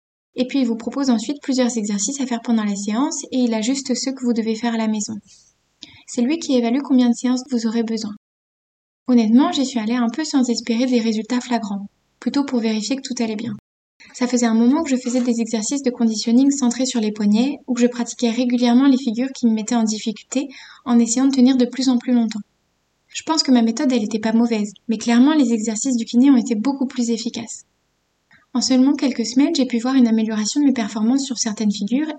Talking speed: 225 wpm